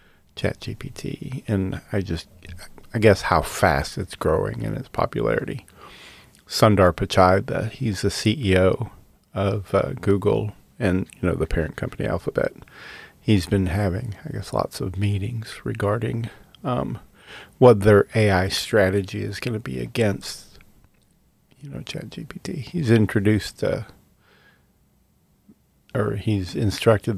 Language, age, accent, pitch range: English, 40-59, American, 95-110 Hz